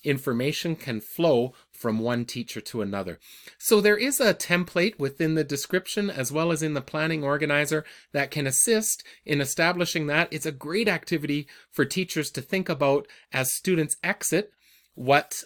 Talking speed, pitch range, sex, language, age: 165 wpm, 130-170 Hz, male, English, 30-49